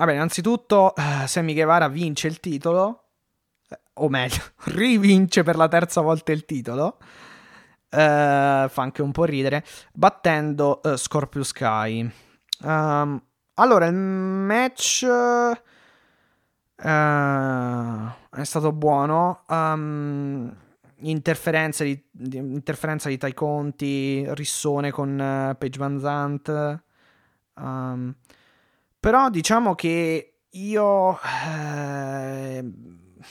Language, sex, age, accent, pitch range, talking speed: Italian, male, 20-39, native, 140-165 Hz, 95 wpm